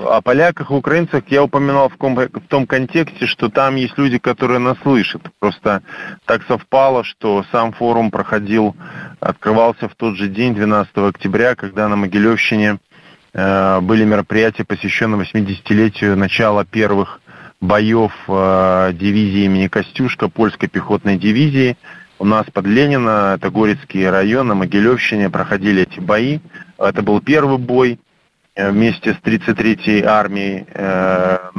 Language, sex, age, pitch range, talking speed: Russian, male, 20-39, 100-125 Hz, 125 wpm